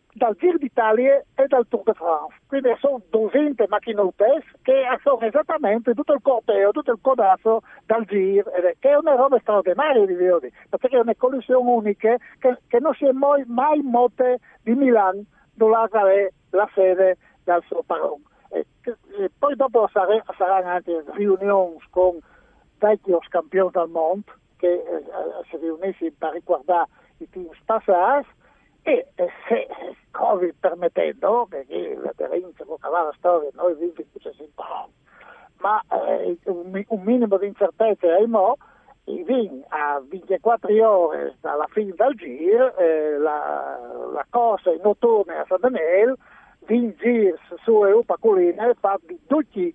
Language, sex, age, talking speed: Italian, male, 60-79, 145 wpm